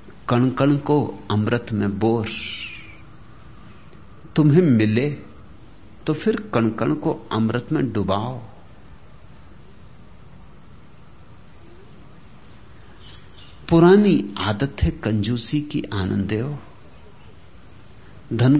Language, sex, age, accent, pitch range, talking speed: English, male, 60-79, Indian, 110-180 Hz, 70 wpm